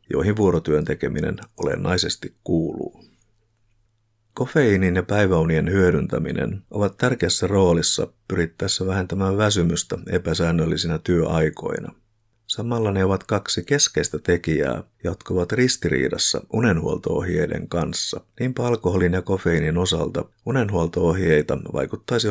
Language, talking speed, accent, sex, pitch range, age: Finnish, 95 wpm, native, male, 85-110 Hz, 50-69